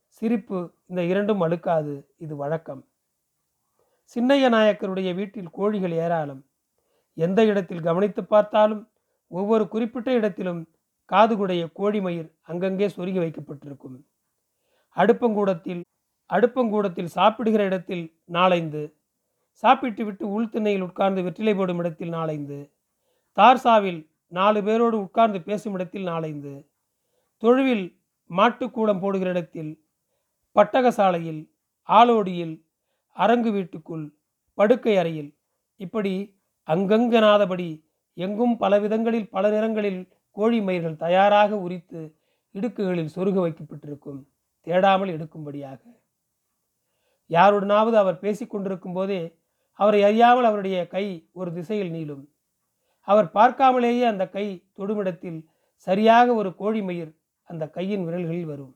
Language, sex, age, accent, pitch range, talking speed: Tamil, male, 40-59, native, 170-215 Hz, 95 wpm